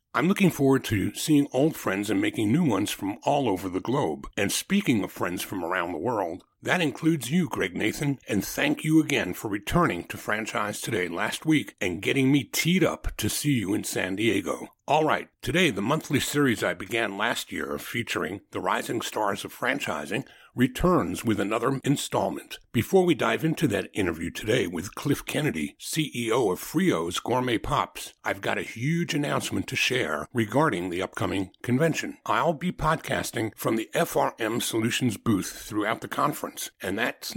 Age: 60-79